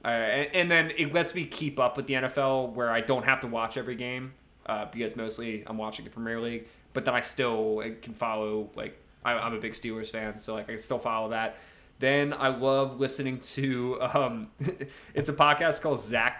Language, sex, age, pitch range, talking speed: English, male, 20-39, 115-135 Hz, 215 wpm